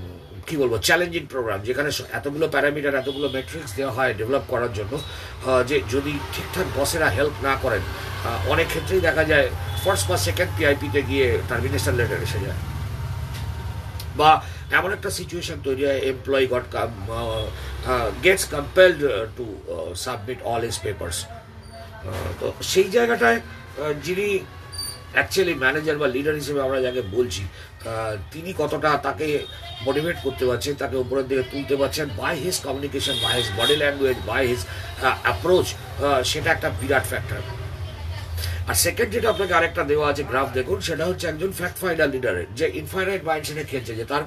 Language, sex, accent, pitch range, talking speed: Bengali, male, native, 100-150 Hz, 75 wpm